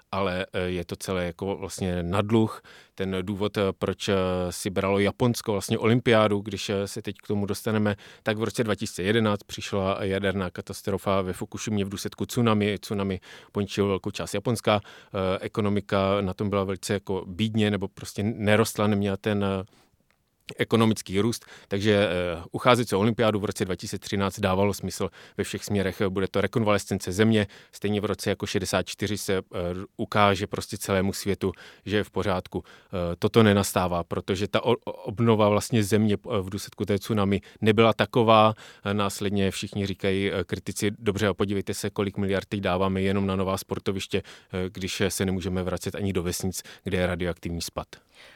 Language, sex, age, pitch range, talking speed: Czech, male, 30-49, 95-105 Hz, 160 wpm